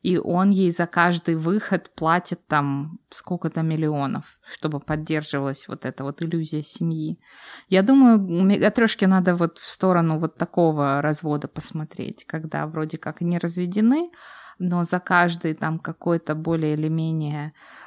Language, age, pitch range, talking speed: Russian, 20-39, 160-205 Hz, 140 wpm